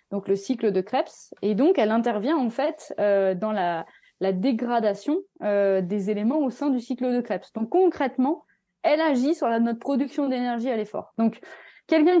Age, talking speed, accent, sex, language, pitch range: 20-39, 185 wpm, French, female, French, 200-265 Hz